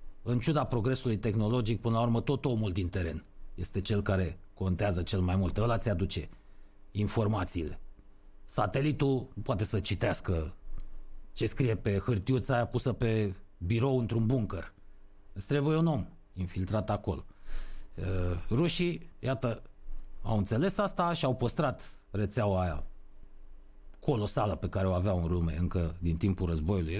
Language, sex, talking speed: Romanian, male, 140 wpm